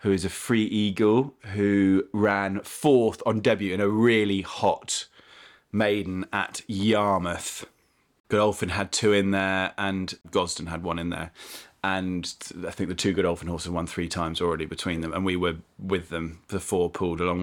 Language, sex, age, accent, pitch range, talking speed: English, male, 30-49, British, 85-100 Hz, 175 wpm